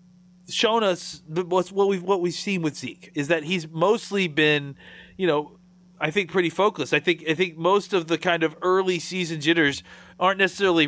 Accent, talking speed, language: American, 195 wpm, English